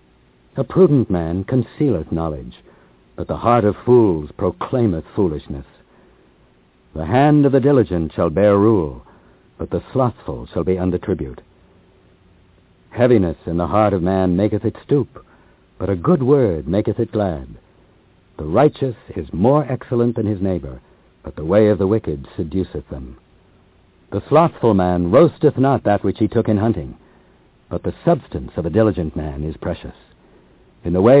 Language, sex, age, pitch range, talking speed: English, male, 60-79, 80-115 Hz, 160 wpm